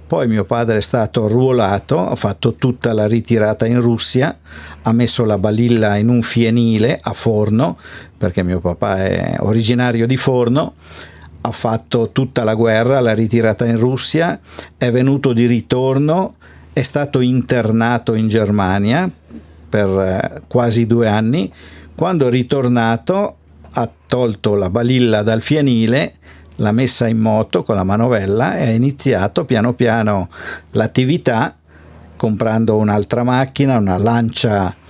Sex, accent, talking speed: male, native, 135 wpm